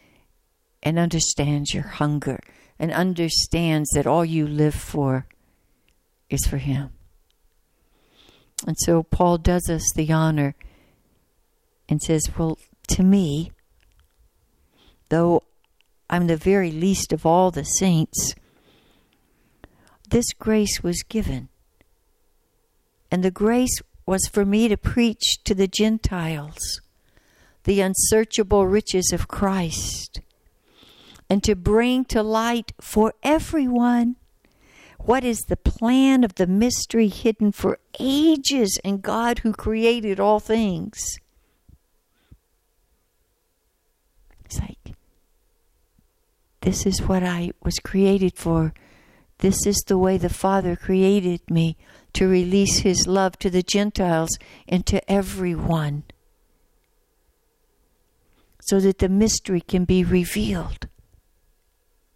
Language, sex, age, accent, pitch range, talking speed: English, female, 60-79, American, 160-210 Hz, 110 wpm